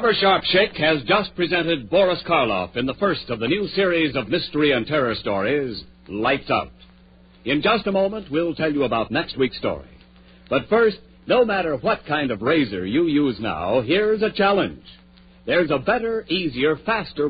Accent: American